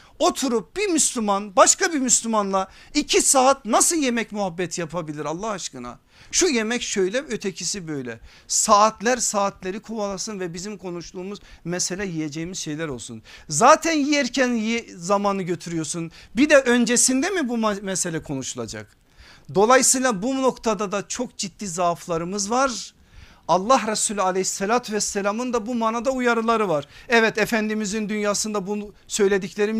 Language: Turkish